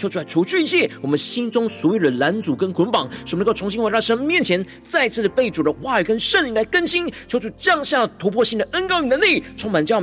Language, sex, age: Chinese, male, 40-59